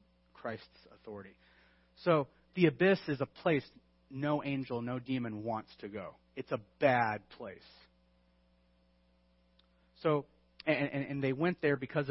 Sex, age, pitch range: male, 30-49, 95-145 Hz